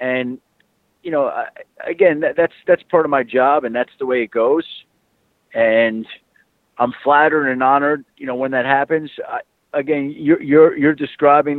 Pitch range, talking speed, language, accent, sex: 120-145 Hz, 175 wpm, English, American, male